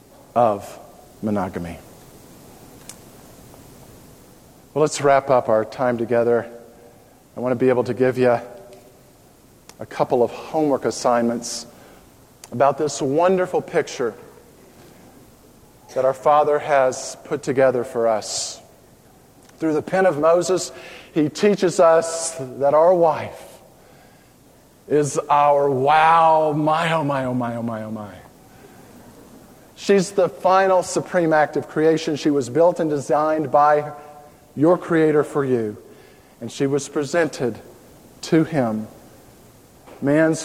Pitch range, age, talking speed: 125-160 Hz, 50-69, 120 wpm